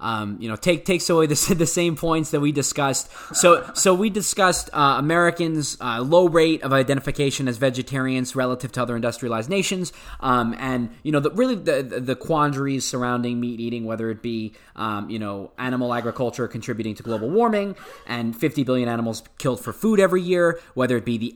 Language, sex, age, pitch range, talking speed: English, male, 20-39, 115-140 Hz, 190 wpm